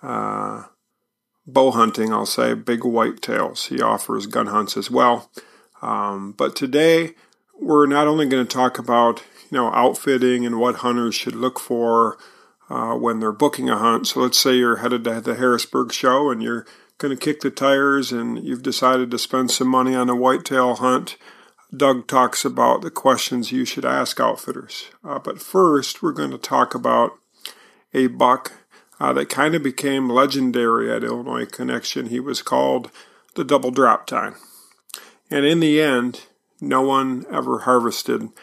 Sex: male